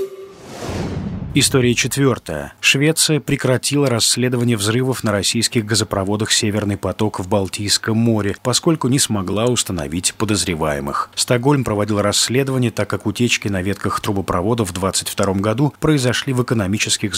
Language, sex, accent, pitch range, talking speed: Russian, male, native, 95-125 Hz, 120 wpm